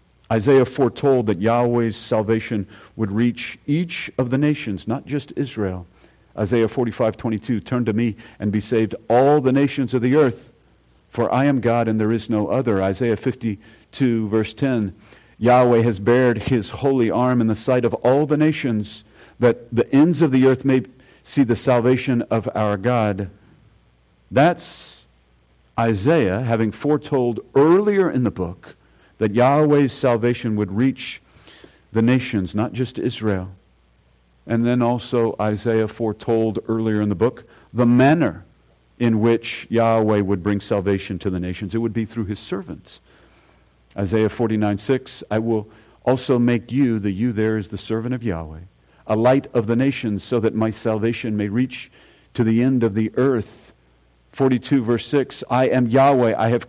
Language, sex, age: English, male, 50-69